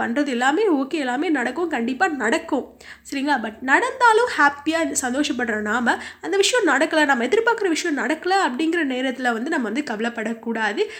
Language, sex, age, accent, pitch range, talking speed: Tamil, female, 20-39, native, 235-360 Hz, 140 wpm